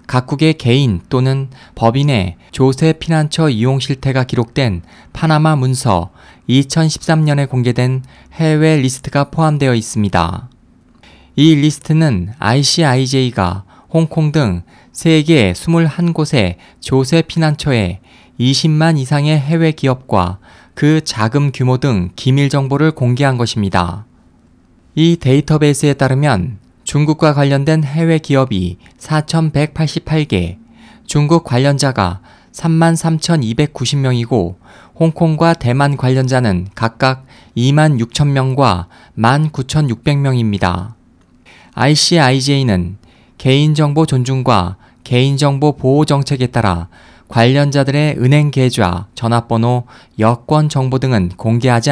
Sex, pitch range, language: male, 115-150 Hz, Korean